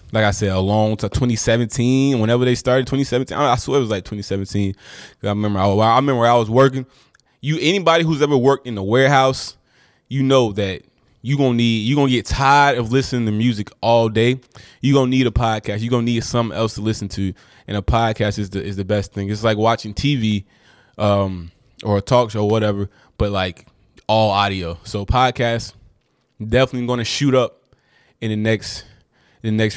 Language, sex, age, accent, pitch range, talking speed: English, male, 20-39, American, 105-125 Hz, 205 wpm